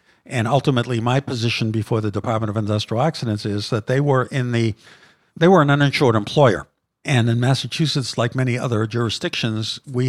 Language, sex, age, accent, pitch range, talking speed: English, male, 60-79, American, 115-135 Hz, 175 wpm